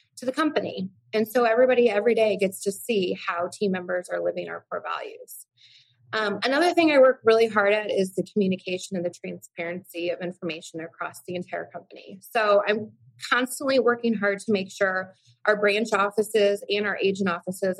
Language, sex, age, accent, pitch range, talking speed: English, female, 20-39, American, 175-220 Hz, 180 wpm